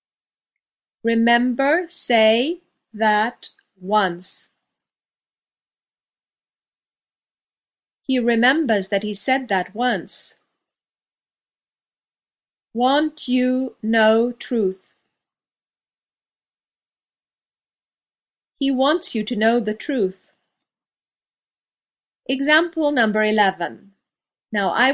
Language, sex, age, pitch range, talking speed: English, female, 50-69, 195-255 Hz, 65 wpm